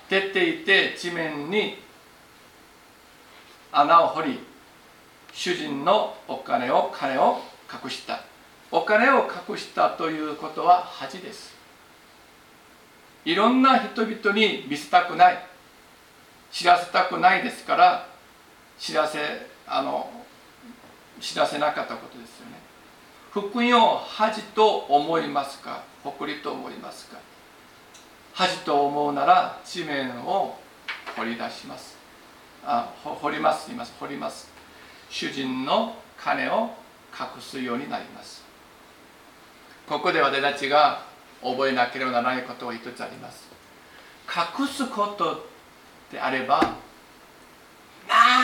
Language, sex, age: Japanese, male, 50-69